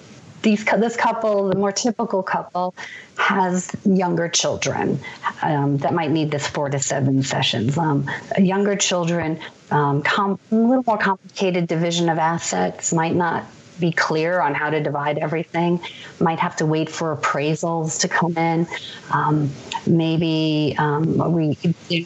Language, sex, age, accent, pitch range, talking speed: English, female, 40-59, American, 155-200 Hz, 140 wpm